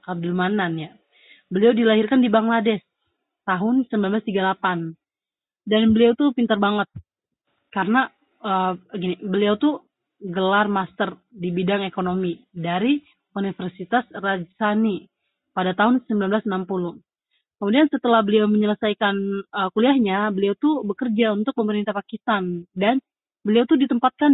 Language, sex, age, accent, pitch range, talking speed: Indonesian, female, 30-49, native, 190-230 Hz, 115 wpm